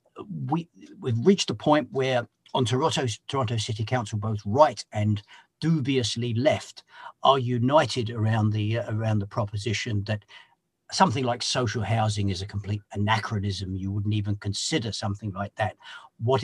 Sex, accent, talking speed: male, British, 145 wpm